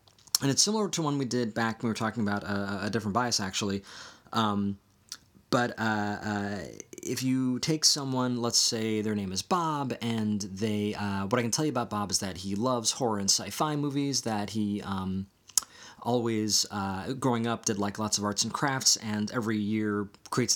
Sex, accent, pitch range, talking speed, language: male, American, 105-135 Hz, 185 wpm, English